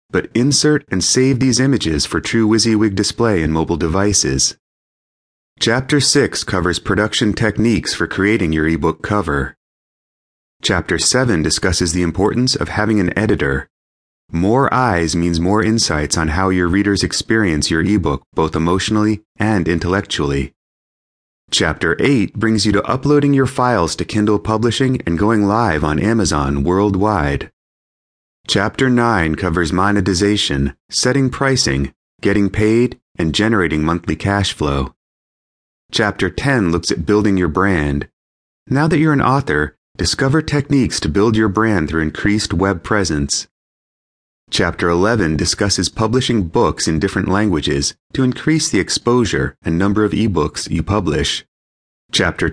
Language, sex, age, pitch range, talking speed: English, male, 30-49, 80-115 Hz, 135 wpm